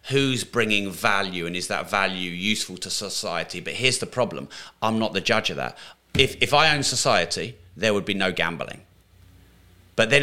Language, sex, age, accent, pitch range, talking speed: English, male, 30-49, British, 95-130 Hz, 190 wpm